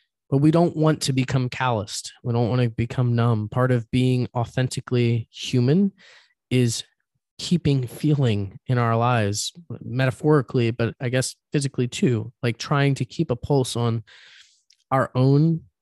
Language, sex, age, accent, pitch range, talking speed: English, male, 20-39, American, 120-145 Hz, 150 wpm